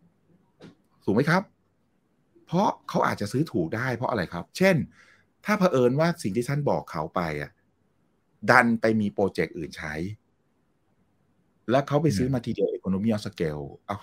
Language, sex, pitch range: Thai, male, 90-140 Hz